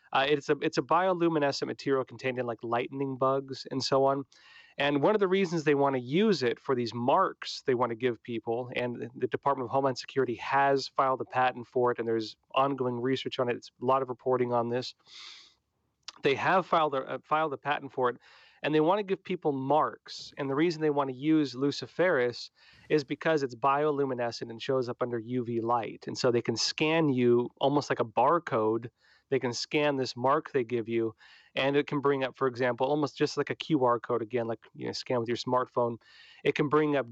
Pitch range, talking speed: 120-145 Hz, 220 wpm